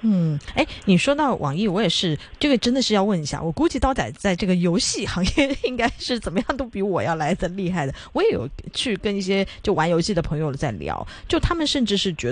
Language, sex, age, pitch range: Chinese, female, 30-49, 160-215 Hz